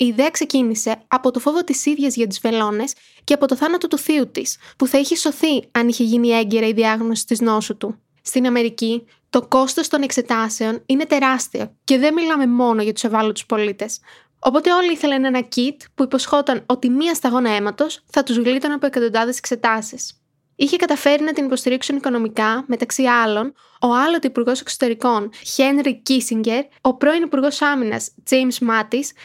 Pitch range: 230-280 Hz